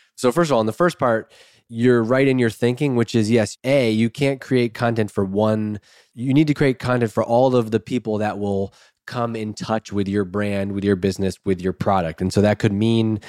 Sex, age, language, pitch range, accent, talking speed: male, 20-39, English, 105-130 Hz, American, 235 wpm